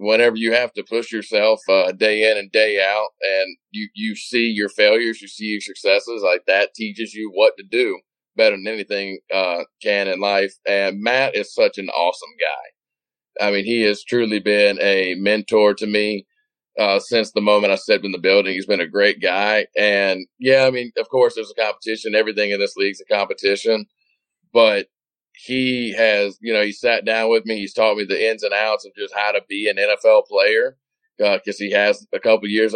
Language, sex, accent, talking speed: English, male, American, 210 wpm